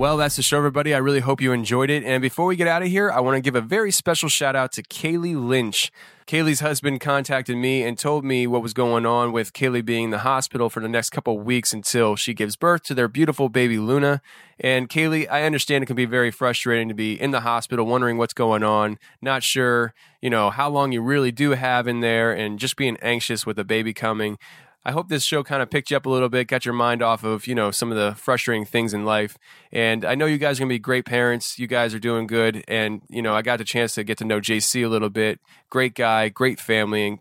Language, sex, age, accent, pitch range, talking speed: English, male, 20-39, American, 115-135 Hz, 260 wpm